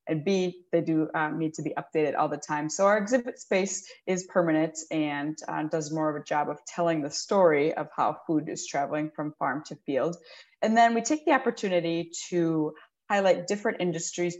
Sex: female